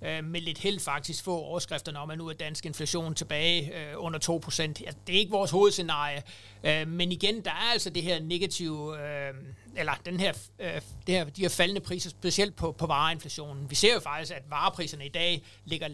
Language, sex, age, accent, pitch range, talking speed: Danish, male, 60-79, native, 150-180 Hz, 190 wpm